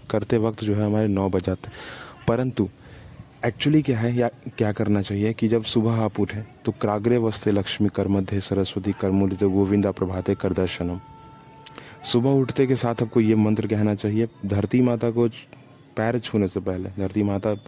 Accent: Indian